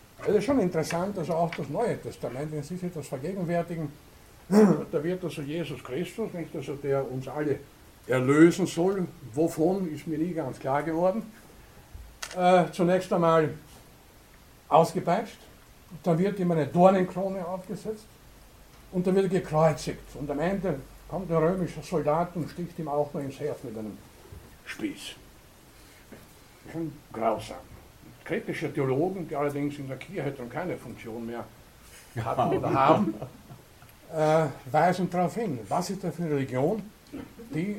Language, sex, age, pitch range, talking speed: German, male, 60-79, 135-180 Hz, 150 wpm